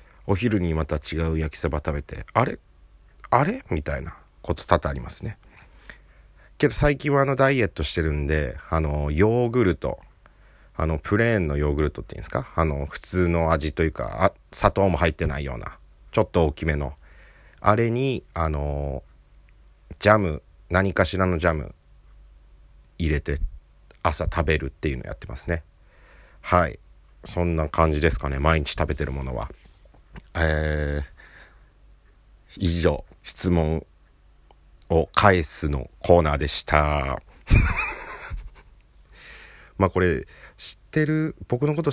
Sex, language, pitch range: male, Japanese, 75-95 Hz